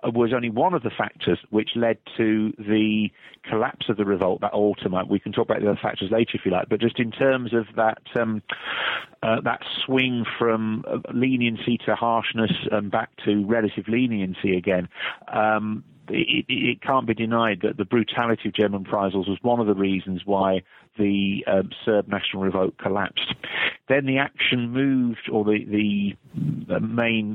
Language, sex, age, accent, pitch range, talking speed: English, male, 40-59, British, 105-115 Hz, 175 wpm